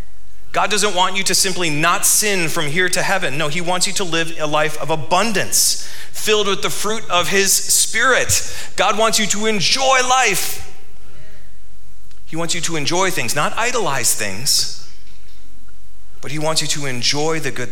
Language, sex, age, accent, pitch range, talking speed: English, male, 40-59, American, 115-170 Hz, 175 wpm